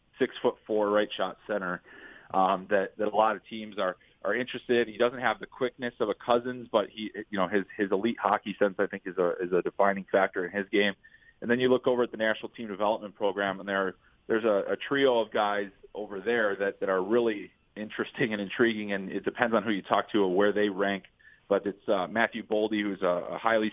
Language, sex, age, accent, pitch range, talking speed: English, male, 30-49, American, 100-110 Hz, 235 wpm